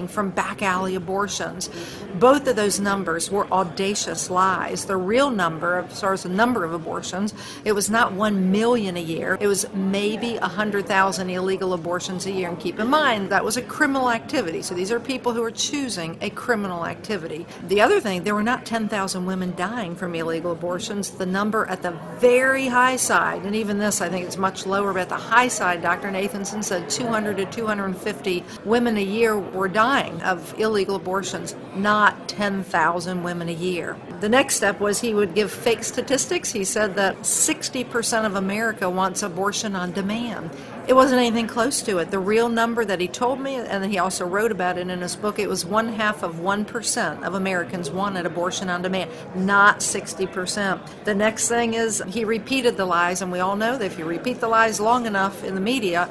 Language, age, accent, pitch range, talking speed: English, 50-69, American, 185-225 Hz, 195 wpm